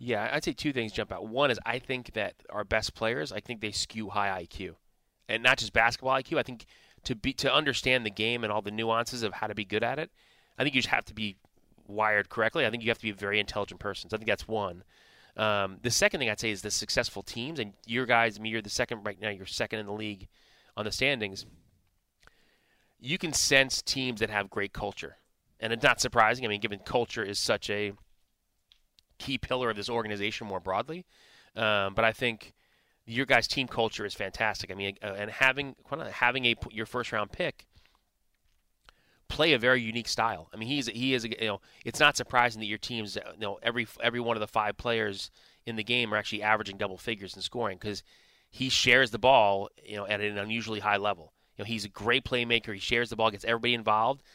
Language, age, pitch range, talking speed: English, 30-49, 105-120 Hz, 230 wpm